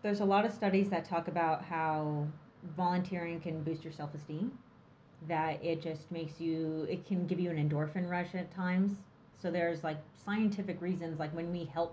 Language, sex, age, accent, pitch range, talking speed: English, female, 30-49, American, 155-180 Hz, 190 wpm